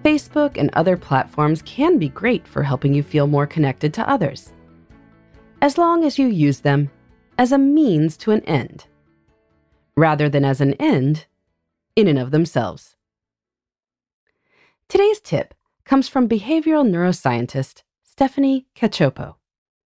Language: English